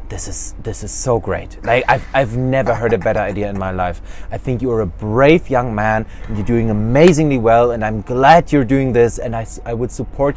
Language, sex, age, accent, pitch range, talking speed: English, male, 20-39, German, 100-155 Hz, 235 wpm